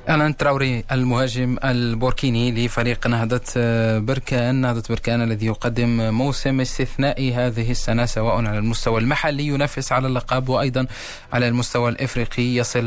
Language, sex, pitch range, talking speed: Arabic, male, 120-140 Hz, 125 wpm